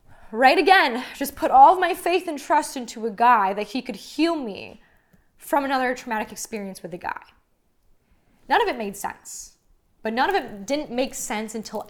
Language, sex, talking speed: English, female, 190 wpm